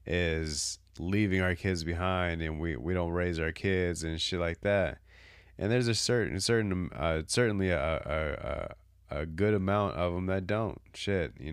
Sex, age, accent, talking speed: male, 30-49, American, 180 wpm